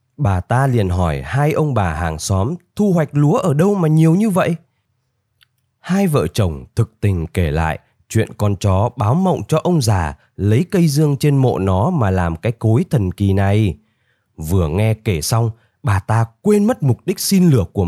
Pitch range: 105-165 Hz